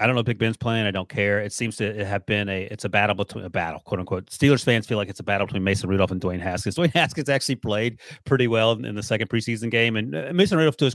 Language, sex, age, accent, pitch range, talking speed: English, male, 30-49, American, 100-125 Hz, 290 wpm